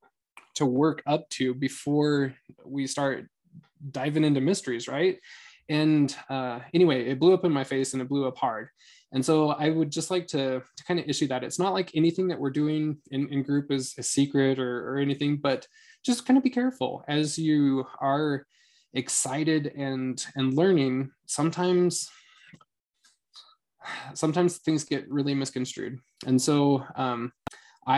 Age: 20-39